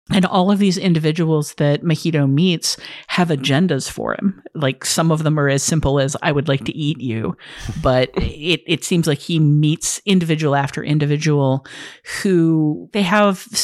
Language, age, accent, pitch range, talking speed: English, 50-69, American, 140-180 Hz, 170 wpm